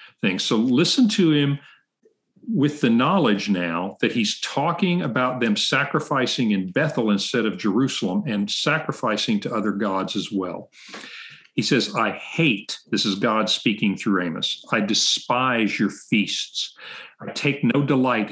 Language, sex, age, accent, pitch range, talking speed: English, male, 50-69, American, 105-155 Hz, 145 wpm